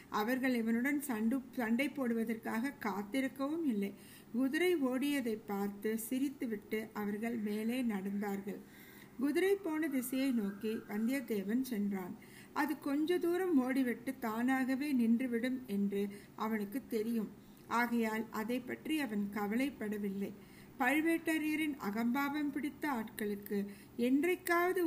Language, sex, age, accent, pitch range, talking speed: Tamil, female, 60-79, native, 215-275 Hz, 95 wpm